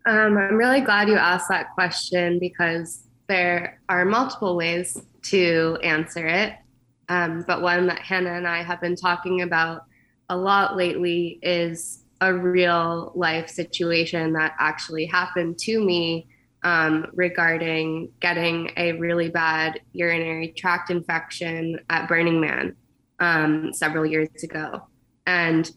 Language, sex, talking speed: English, female, 135 wpm